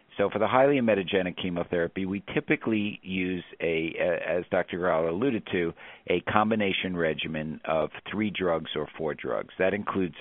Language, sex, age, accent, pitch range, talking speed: English, male, 50-69, American, 75-95 Hz, 155 wpm